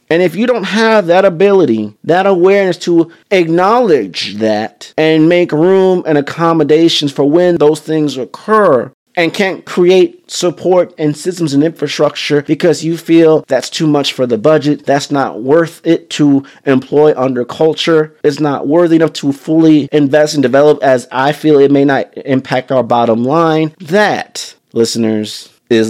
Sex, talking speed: male, 160 wpm